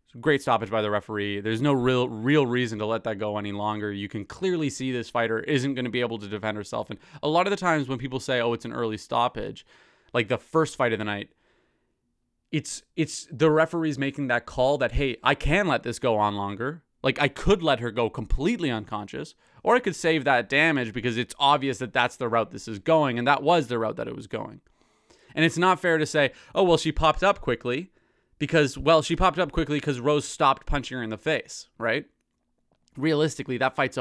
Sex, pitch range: male, 120-155 Hz